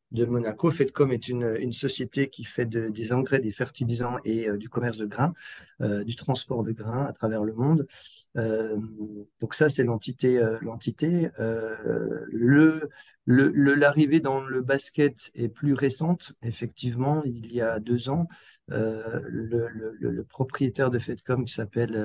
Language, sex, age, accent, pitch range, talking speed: French, male, 50-69, French, 115-135 Hz, 170 wpm